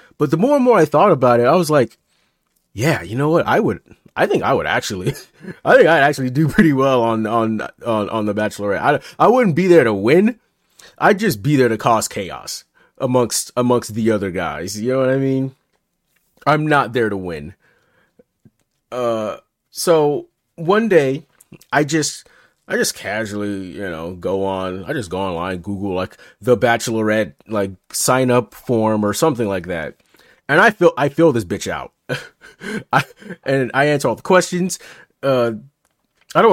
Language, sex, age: English, male, 30-49